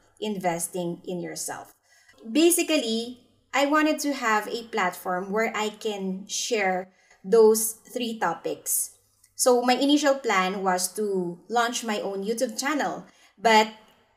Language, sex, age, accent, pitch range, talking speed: English, female, 20-39, Filipino, 185-225 Hz, 125 wpm